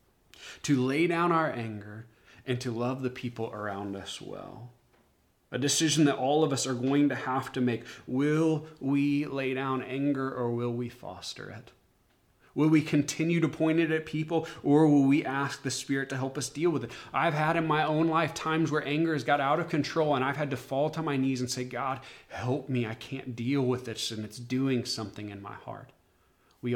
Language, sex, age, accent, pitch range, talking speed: English, male, 30-49, American, 120-150 Hz, 215 wpm